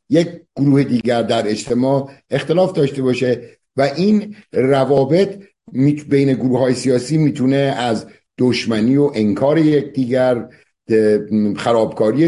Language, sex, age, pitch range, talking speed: Persian, male, 60-79, 115-140 Hz, 110 wpm